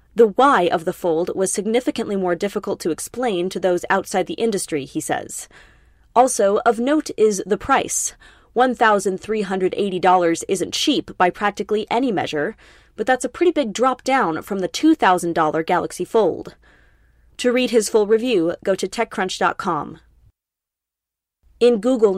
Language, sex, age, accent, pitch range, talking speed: English, female, 20-39, American, 185-230 Hz, 145 wpm